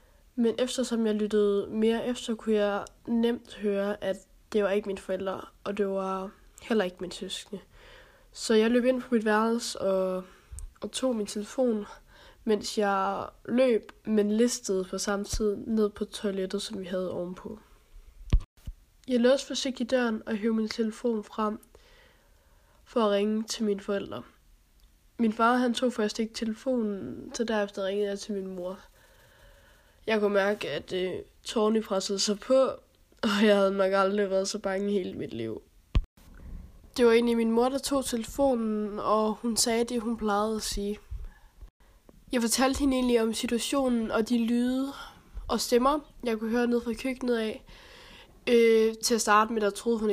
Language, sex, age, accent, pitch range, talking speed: Danish, female, 20-39, native, 200-235 Hz, 170 wpm